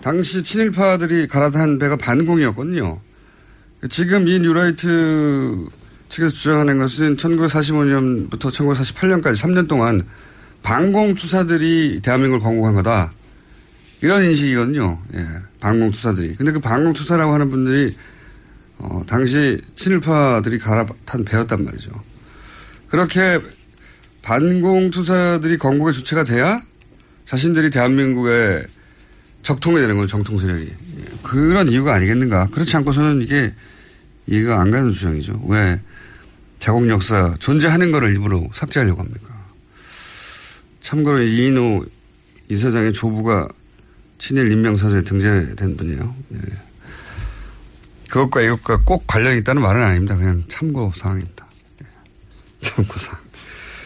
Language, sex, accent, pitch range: Korean, male, native, 100-155 Hz